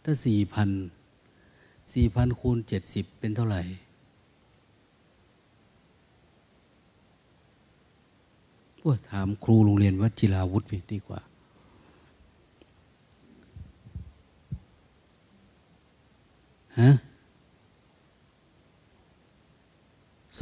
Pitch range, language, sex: 95-115 Hz, Thai, male